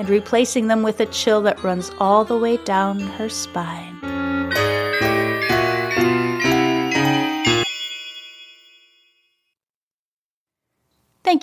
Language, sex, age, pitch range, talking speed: English, female, 30-49, 195-270 Hz, 80 wpm